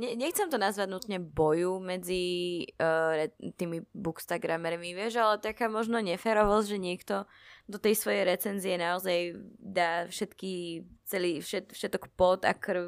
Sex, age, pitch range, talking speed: female, 20-39, 170-205 Hz, 135 wpm